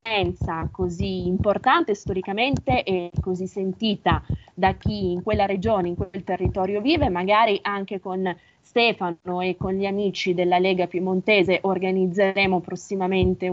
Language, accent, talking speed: Italian, native, 125 wpm